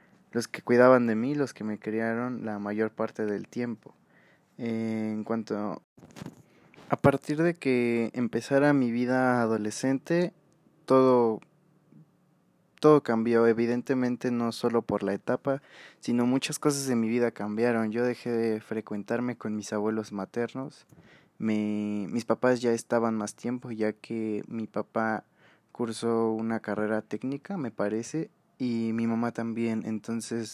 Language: Spanish